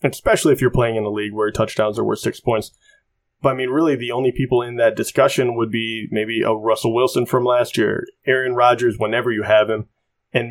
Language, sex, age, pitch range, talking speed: English, male, 20-39, 115-140 Hz, 225 wpm